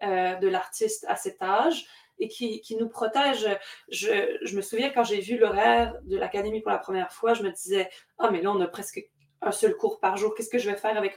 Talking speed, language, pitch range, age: 240 wpm, French, 200-245 Hz, 20-39